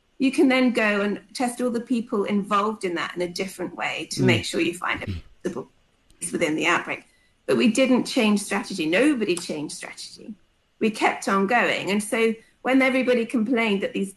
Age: 40-59